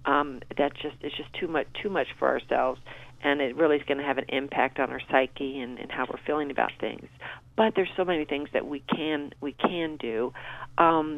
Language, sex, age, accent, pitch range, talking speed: English, female, 40-59, American, 145-170 Hz, 225 wpm